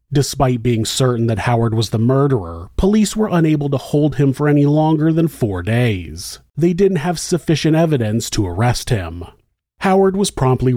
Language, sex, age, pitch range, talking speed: English, male, 30-49, 115-160 Hz, 175 wpm